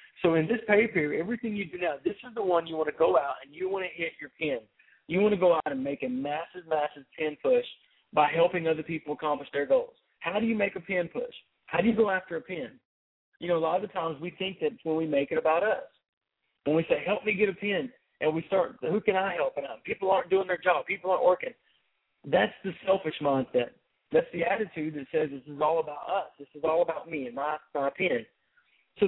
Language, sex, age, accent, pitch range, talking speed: English, male, 40-59, American, 150-195 Hz, 250 wpm